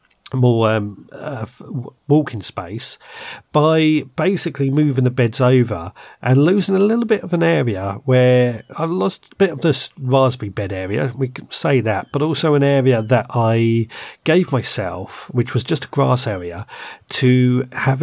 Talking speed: 165 wpm